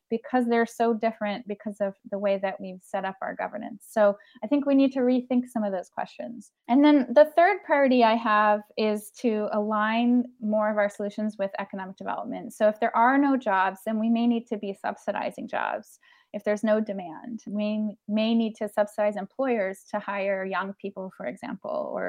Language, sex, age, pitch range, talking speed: English, female, 20-39, 200-235 Hz, 200 wpm